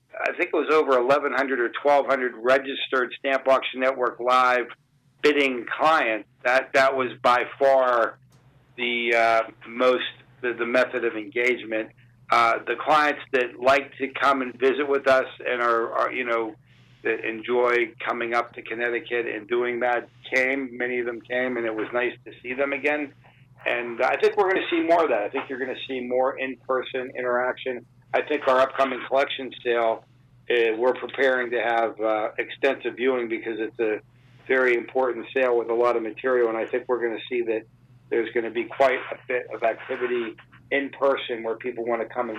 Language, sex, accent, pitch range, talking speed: English, male, American, 120-130 Hz, 185 wpm